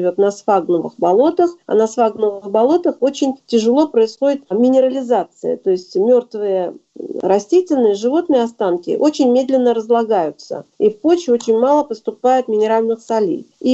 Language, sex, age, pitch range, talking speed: Russian, female, 40-59, 220-300 Hz, 120 wpm